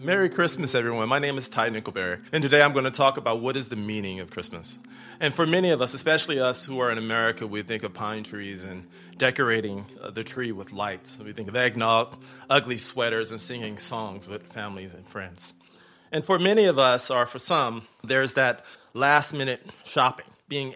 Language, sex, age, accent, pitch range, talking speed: English, male, 40-59, American, 110-135 Hz, 205 wpm